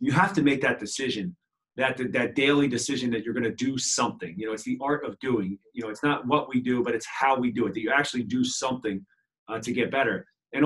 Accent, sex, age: American, male, 30-49